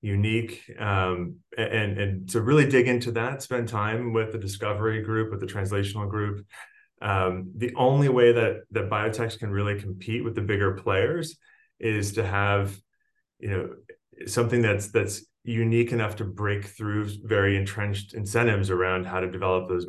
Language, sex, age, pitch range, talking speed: English, male, 30-49, 95-115 Hz, 165 wpm